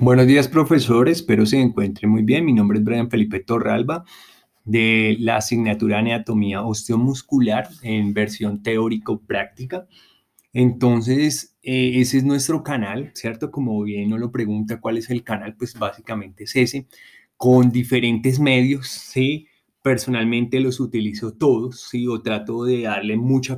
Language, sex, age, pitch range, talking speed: Arabic, male, 20-39, 110-130 Hz, 150 wpm